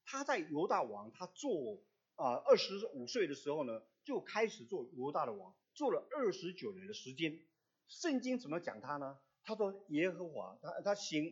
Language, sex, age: Chinese, male, 50-69